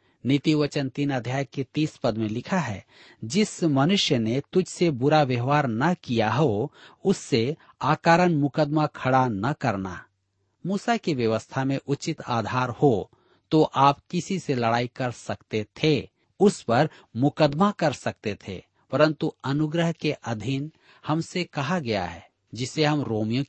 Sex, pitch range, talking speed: male, 115-160 Hz, 150 wpm